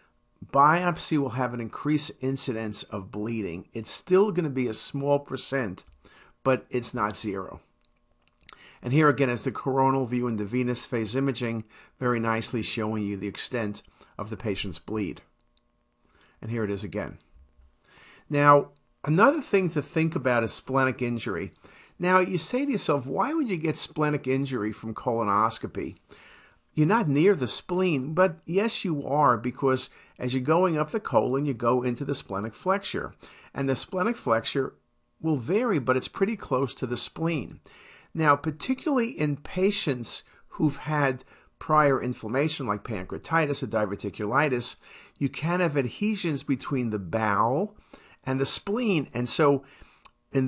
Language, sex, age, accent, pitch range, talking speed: English, male, 50-69, American, 120-160 Hz, 155 wpm